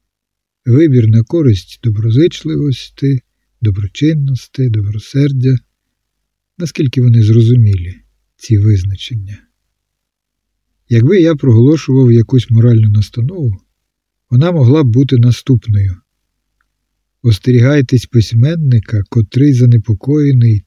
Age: 50-69